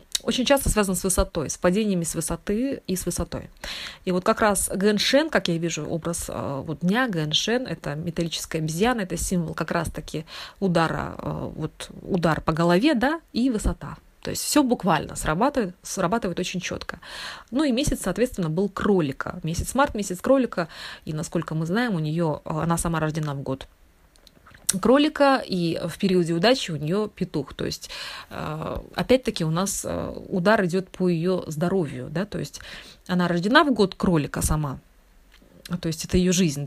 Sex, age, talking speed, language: female, 20-39, 165 wpm, Russian